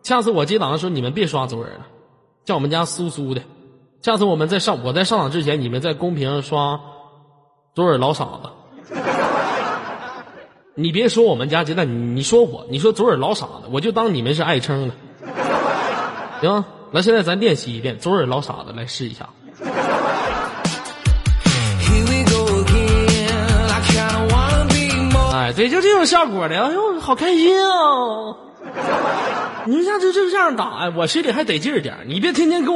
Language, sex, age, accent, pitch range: Chinese, male, 20-39, native, 135-220 Hz